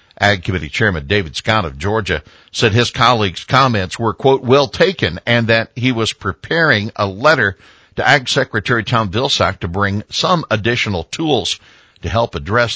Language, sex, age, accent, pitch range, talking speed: English, male, 60-79, American, 90-120 Hz, 165 wpm